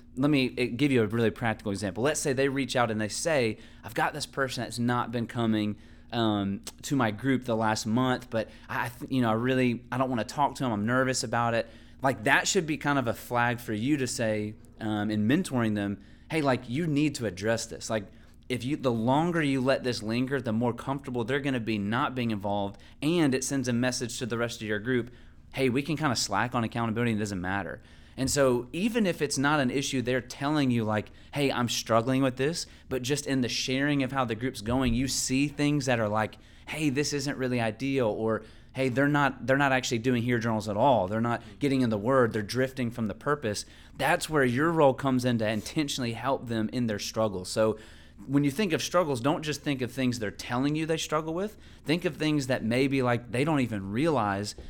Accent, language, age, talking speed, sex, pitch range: American, English, 30-49, 235 wpm, male, 110-135 Hz